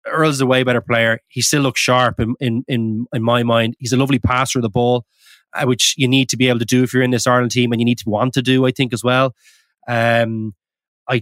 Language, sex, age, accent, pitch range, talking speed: English, male, 20-39, Irish, 120-140 Hz, 260 wpm